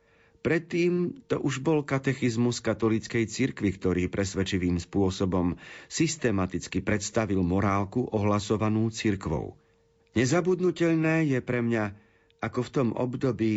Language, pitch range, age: Slovak, 95-125 Hz, 40-59